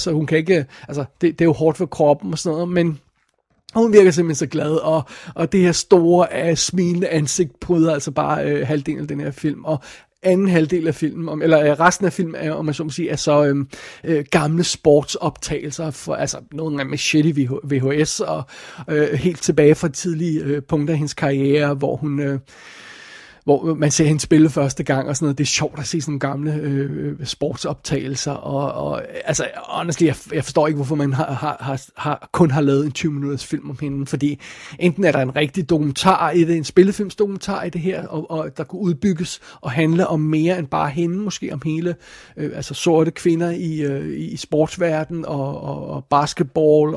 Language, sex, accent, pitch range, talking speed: Danish, male, native, 145-175 Hz, 205 wpm